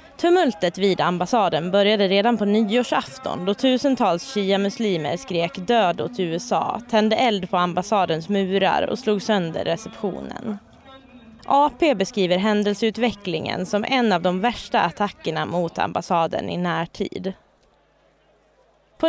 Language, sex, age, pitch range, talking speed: Swedish, female, 20-39, 180-235 Hz, 115 wpm